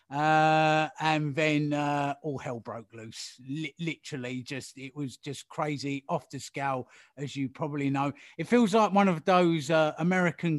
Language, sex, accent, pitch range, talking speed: English, male, British, 135-185 Hz, 170 wpm